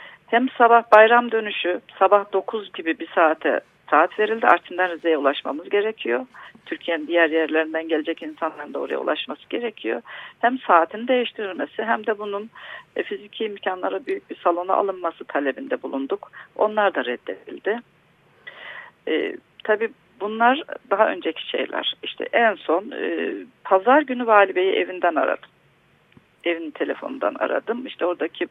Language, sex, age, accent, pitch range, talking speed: Turkish, female, 40-59, native, 170-235 Hz, 130 wpm